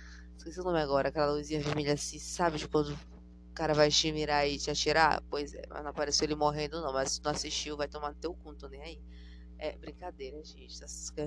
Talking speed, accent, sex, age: 230 wpm, Brazilian, female, 20-39